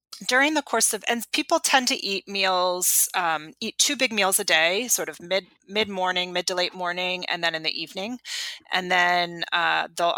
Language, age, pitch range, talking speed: English, 30-49, 165-215 Hz, 200 wpm